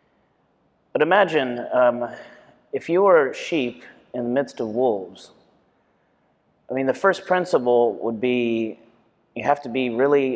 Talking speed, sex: 140 wpm, male